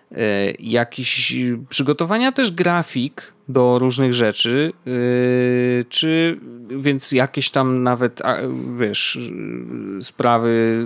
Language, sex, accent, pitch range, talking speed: Polish, male, native, 115-160 Hz, 75 wpm